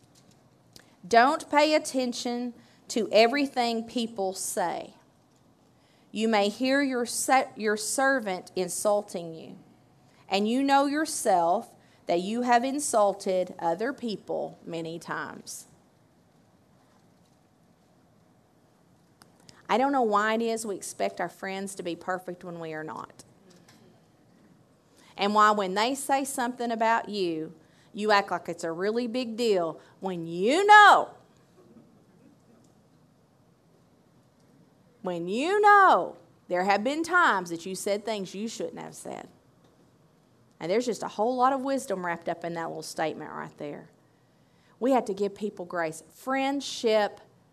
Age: 30-49